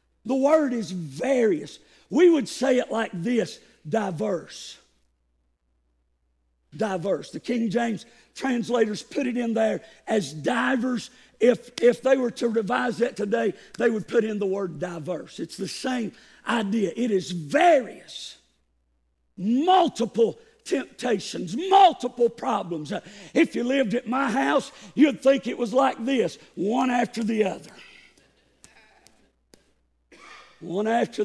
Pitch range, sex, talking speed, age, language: 200-295 Hz, male, 125 wpm, 50-69, English